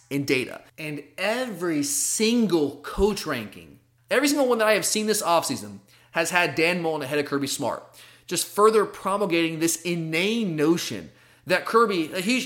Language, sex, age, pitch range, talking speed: English, male, 30-49, 145-190 Hz, 155 wpm